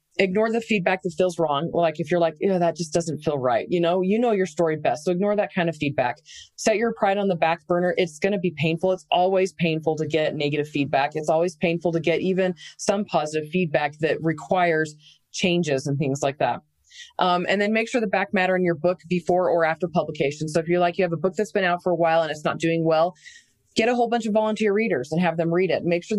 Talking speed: 260 wpm